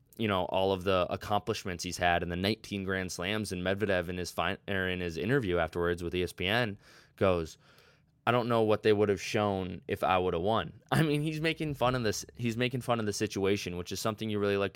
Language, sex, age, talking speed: English, male, 20-39, 235 wpm